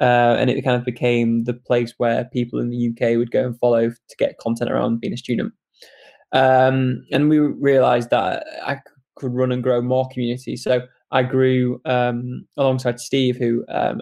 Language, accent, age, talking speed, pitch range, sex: English, British, 10-29, 190 wpm, 120-130 Hz, male